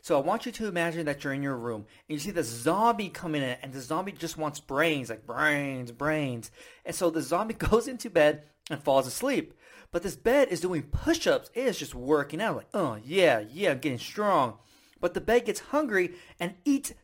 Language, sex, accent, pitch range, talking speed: English, male, American, 145-210 Hz, 215 wpm